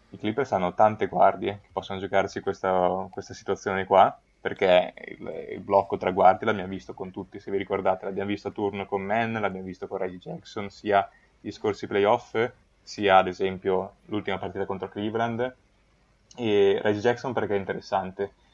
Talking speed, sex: 170 wpm, male